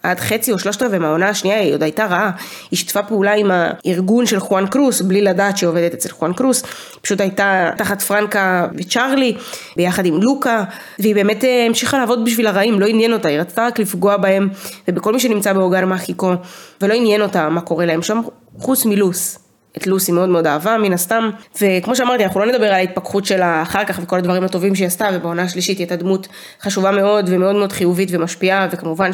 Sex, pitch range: female, 180-220 Hz